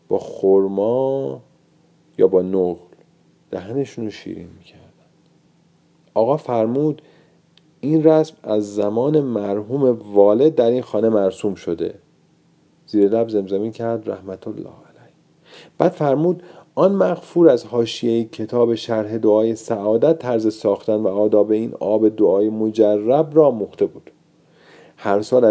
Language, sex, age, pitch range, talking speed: Persian, male, 40-59, 105-145 Hz, 120 wpm